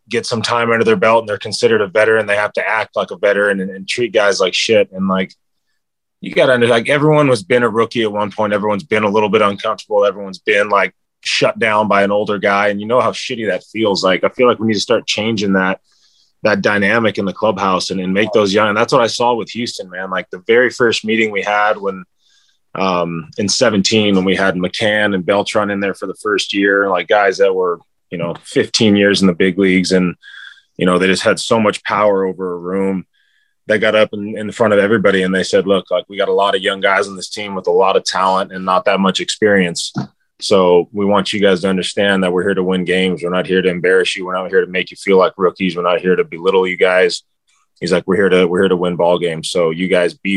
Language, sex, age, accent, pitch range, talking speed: English, male, 20-39, American, 95-110 Hz, 260 wpm